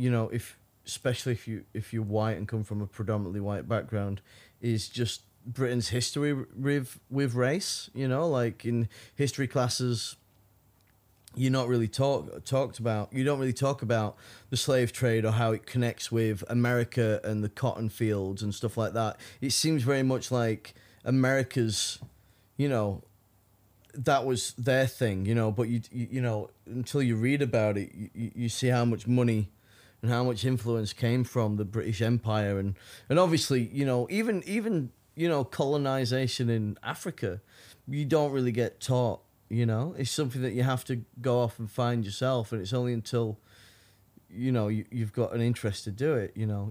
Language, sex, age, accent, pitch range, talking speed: English, male, 20-39, British, 110-130 Hz, 185 wpm